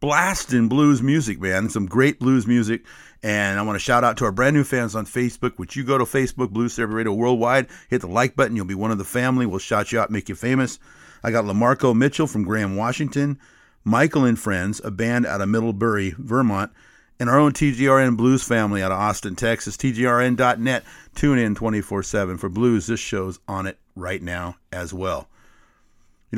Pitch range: 100-125 Hz